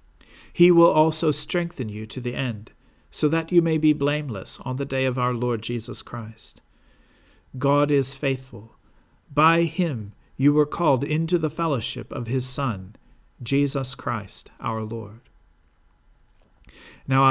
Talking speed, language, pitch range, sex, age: 140 wpm, English, 120-160 Hz, male, 50-69